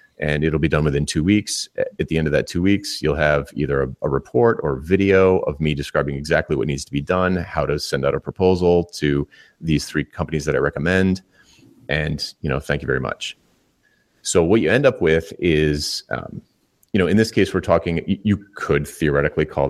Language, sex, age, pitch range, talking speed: English, male, 30-49, 75-95 Hz, 215 wpm